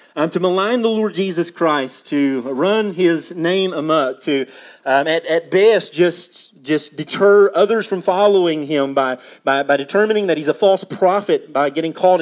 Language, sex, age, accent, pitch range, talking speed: English, male, 40-59, American, 155-195 Hz, 175 wpm